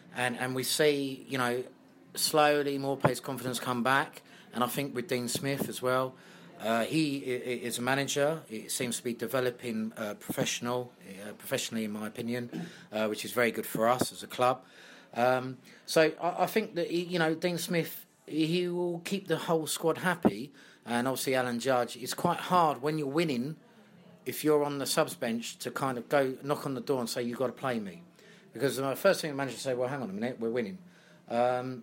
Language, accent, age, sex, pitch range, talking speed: English, British, 30-49, male, 115-150 Hz, 210 wpm